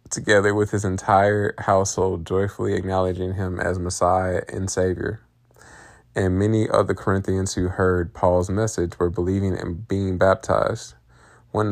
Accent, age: American, 20-39